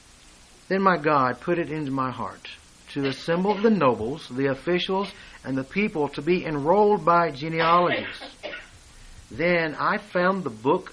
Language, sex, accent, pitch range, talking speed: English, male, American, 115-170 Hz, 150 wpm